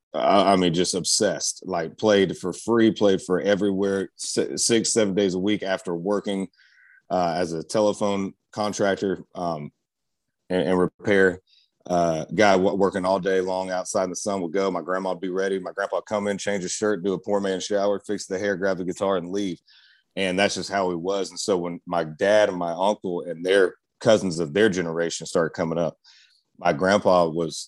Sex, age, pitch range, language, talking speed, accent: male, 30-49, 90-100 Hz, English, 195 wpm, American